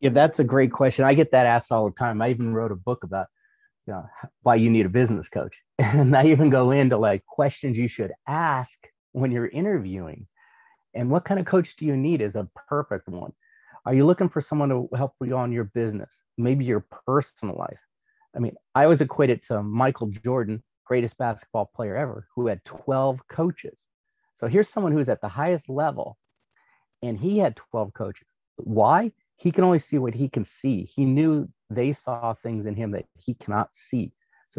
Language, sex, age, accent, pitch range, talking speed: English, male, 30-49, American, 115-150 Hz, 200 wpm